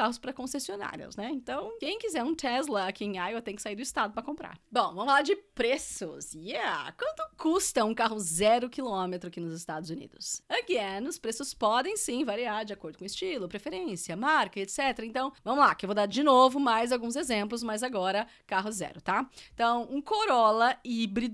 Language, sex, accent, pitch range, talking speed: Portuguese, female, Brazilian, 200-280 Hz, 195 wpm